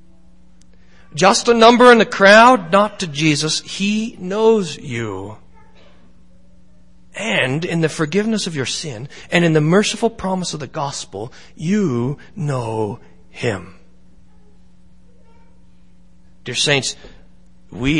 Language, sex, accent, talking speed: English, male, American, 110 wpm